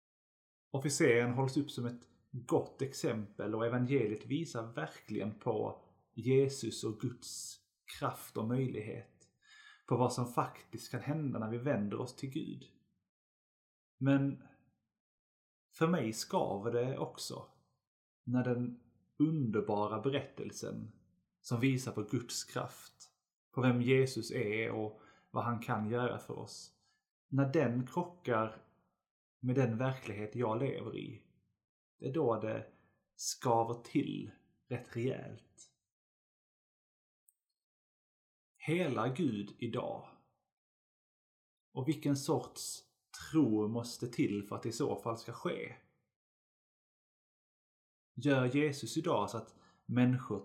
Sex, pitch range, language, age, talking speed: male, 110-135 Hz, Swedish, 30-49, 115 wpm